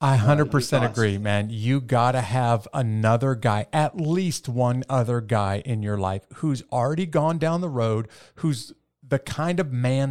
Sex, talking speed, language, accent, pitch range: male, 170 wpm, English, American, 115-145 Hz